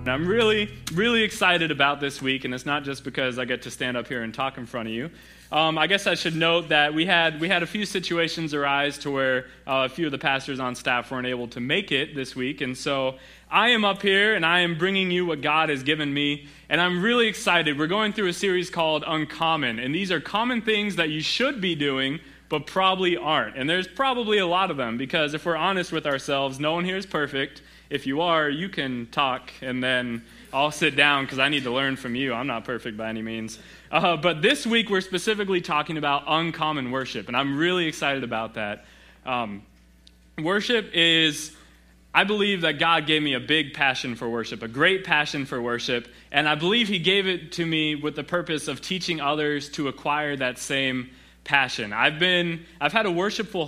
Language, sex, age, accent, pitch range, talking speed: English, male, 20-39, American, 130-170 Hz, 220 wpm